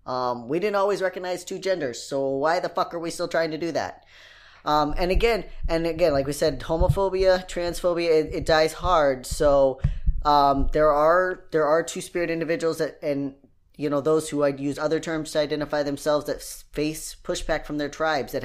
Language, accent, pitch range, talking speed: English, American, 140-170 Hz, 200 wpm